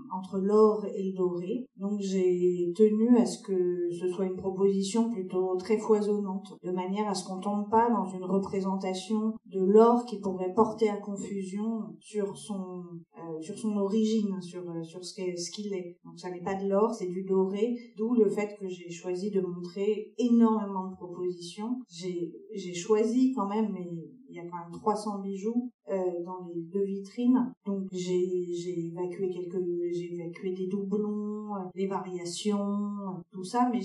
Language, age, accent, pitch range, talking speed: French, 40-59, French, 180-215 Hz, 175 wpm